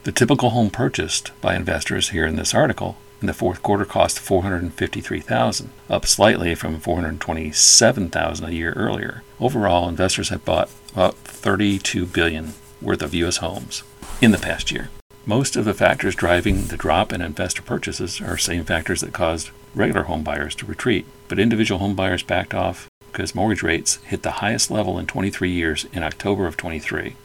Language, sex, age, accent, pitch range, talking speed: English, male, 50-69, American, 85-105 Hz, 170 wpm